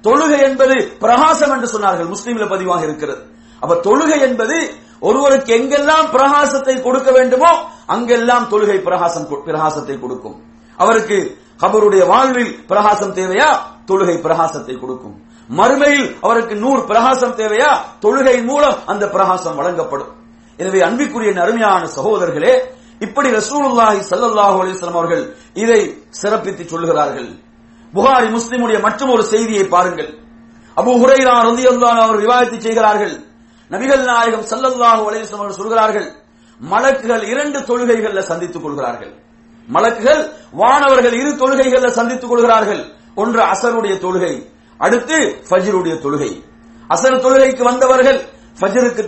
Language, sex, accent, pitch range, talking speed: English, male, Indian, 190-260 Hz, 105 wpm